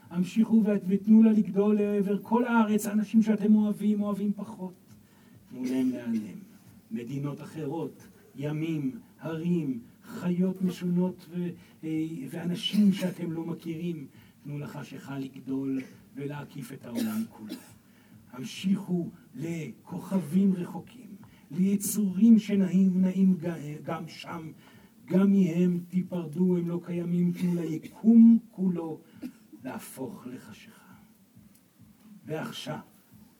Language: Hebrew